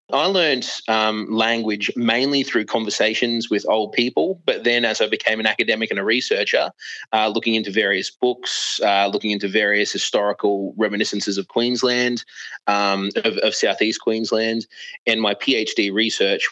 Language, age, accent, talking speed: English, 20-39, Australian, 155 wpm